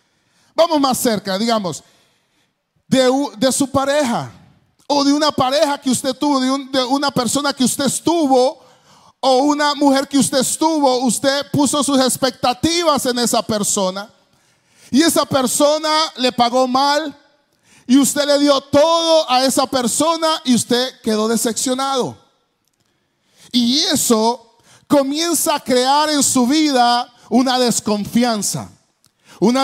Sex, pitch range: male, 235-290 Hz